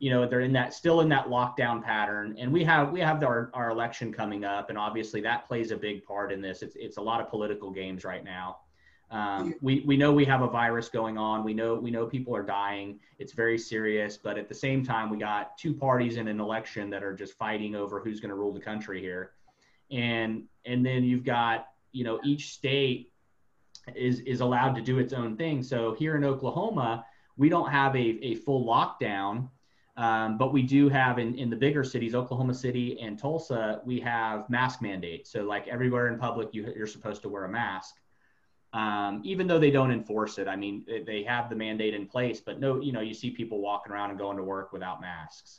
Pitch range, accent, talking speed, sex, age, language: 105-130 Hz, American, 220 wpm, male, 30-49, English